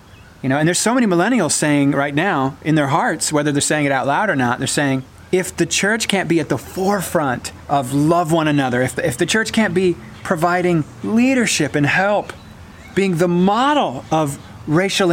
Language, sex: English, male